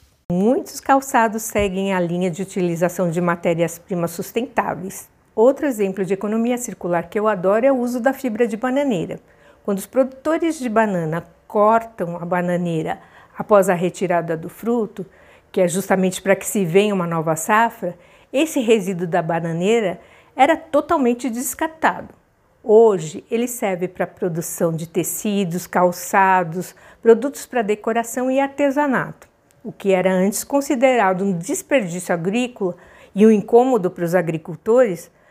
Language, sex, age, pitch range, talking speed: Portuguese, female, 50-69, 180-245 Hz, 140 wpm